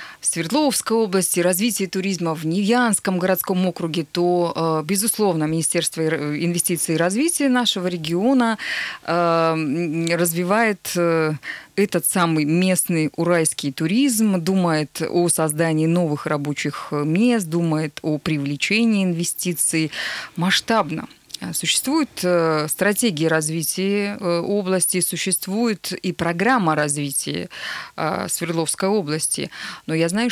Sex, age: female, 20-39